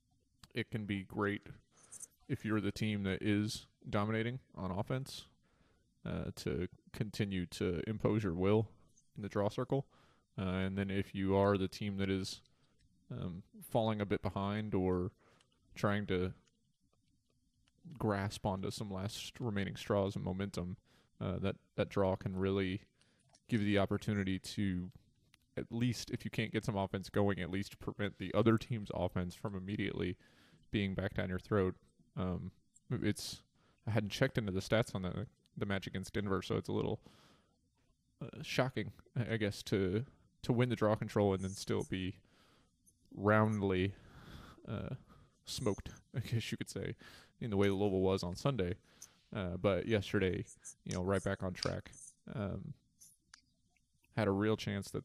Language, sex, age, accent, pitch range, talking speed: English, male, 20-39, American, 95-110 Hz, 160 wpm